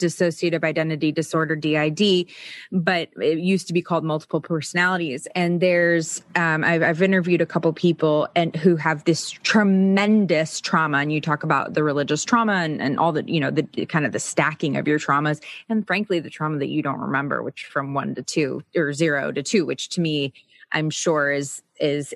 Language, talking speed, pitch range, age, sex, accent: English, 195 wpm, 150-180 Hz, 20-39, female, American